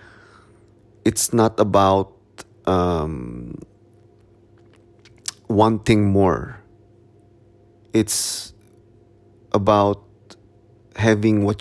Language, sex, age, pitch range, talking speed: English, male, 20-39, 100-115 Hz, 50 wpm